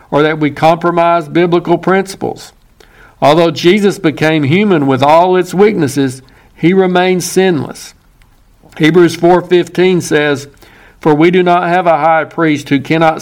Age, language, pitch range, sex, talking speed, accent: 60-79, English, 145-180 Hz, male, 135 wpm, American